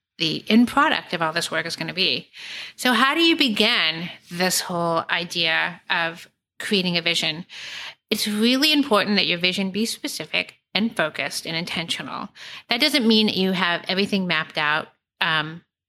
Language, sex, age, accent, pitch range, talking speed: English, female, 30-49, American, 170-220 Hz, 165 wpm